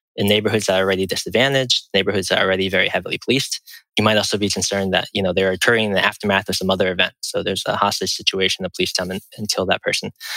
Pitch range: 95-110 Hz